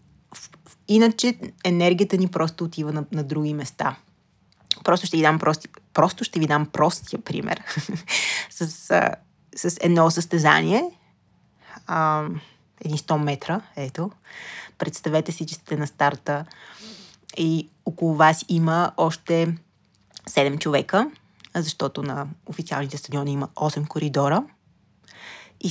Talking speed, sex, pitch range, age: 115 wpm, female, 150-175 Hz, 20-39